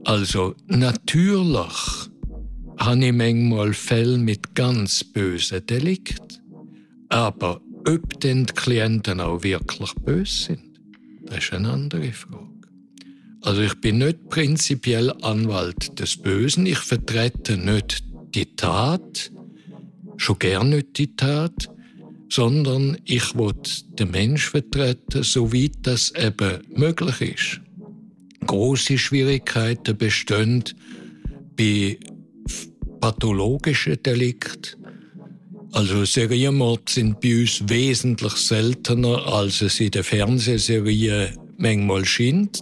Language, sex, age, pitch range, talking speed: German, male, 60-79, 110-140 Hz, 105 wpm